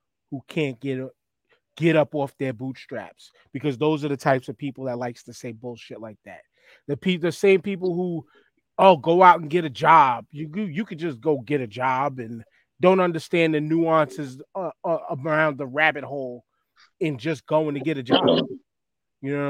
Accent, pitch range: American, 135-175 Hz